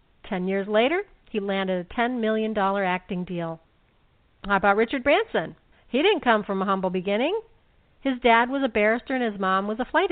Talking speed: 190 wpm